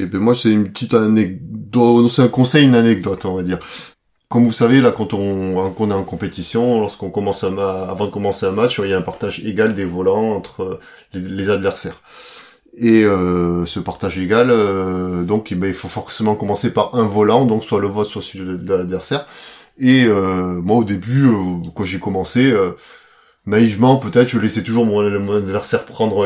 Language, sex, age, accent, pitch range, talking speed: French, male, 30-49, French, 95-115 Hz, 195 wpm